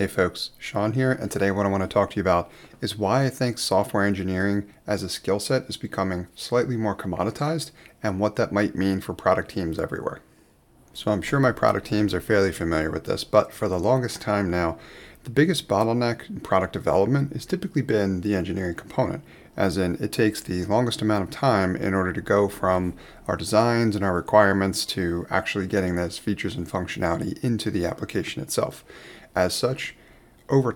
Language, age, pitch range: English, 30-49, 95-115 Hz